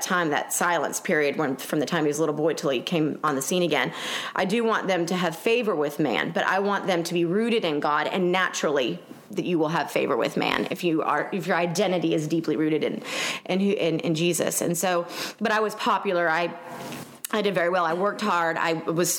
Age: 30-49